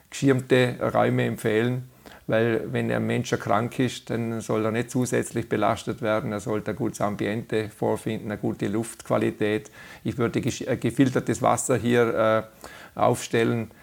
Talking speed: 135 wpm